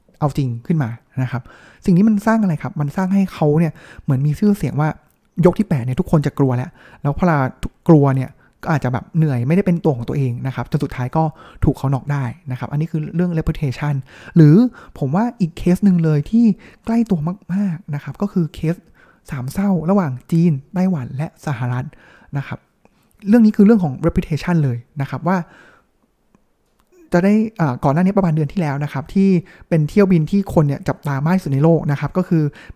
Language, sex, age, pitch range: Thai, male, 20-39, 140-180 Hz